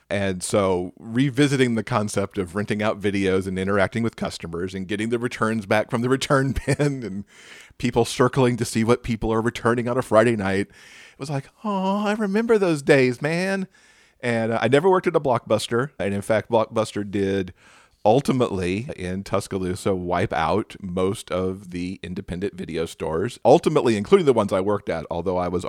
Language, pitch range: English, 95-130 Hz